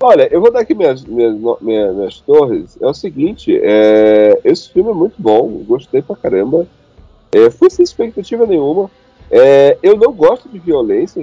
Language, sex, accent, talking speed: Portuguese, male, Brazilian, 180 wpm